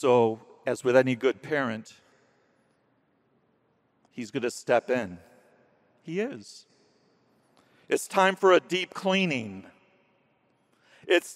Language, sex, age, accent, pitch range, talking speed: English, male, 50-69, American, 160-195 Hz, 100 wpm